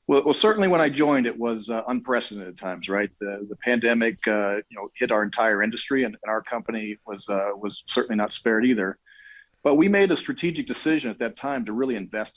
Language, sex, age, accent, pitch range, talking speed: English, male, 40-59, American, 105-125 Hz, 220 wpm